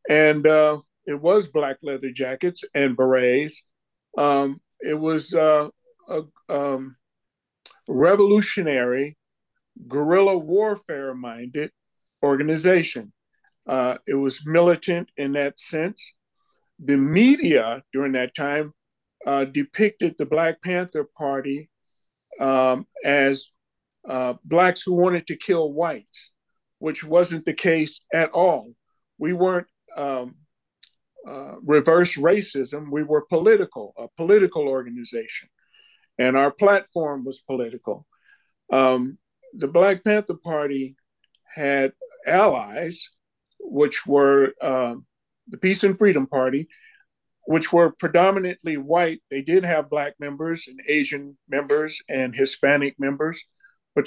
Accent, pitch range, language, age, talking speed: American, 135-175 Hz, English, 50-69, 110 wpm